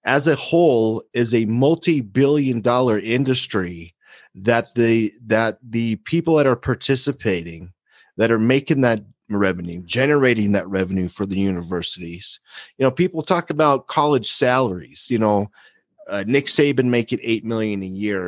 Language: English